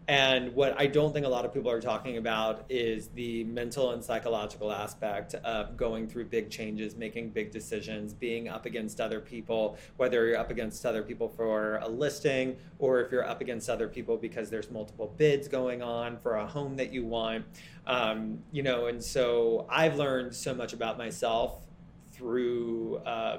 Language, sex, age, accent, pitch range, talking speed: English, male, 30-49, American, 115-145 Hz, 180 wpm